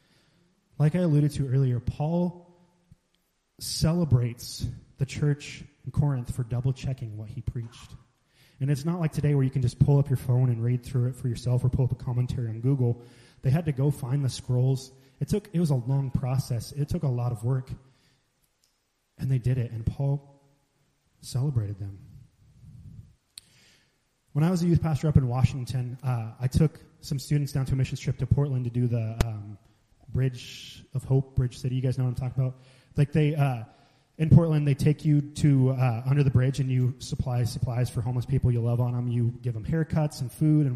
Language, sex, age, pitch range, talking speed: English, male, 20-39, 125-145 Hz, 205 wpm